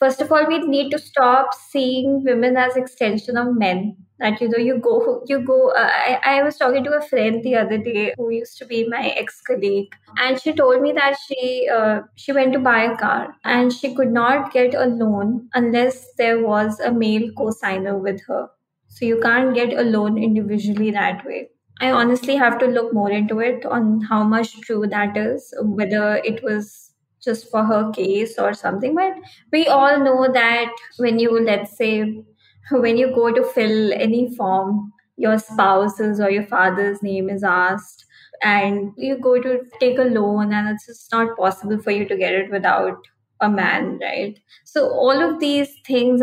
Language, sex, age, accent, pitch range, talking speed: English, female, 20-39, Indian, 210-255 Hz, 190 wpm